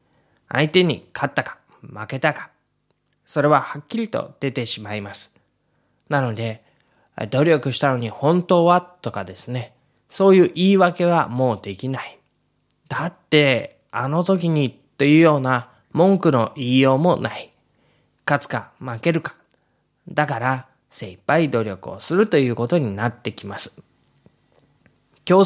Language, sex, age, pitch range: Japanese, male, 20-39, 115-160 Hz